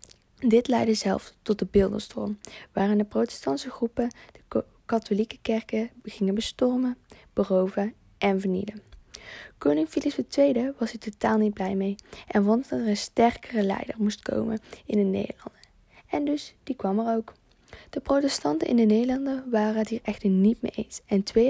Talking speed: 165 wpm